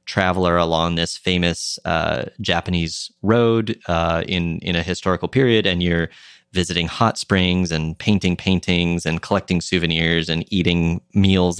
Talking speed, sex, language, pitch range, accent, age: 140 wpm, male, English, 85-95 Hz, American, 30-49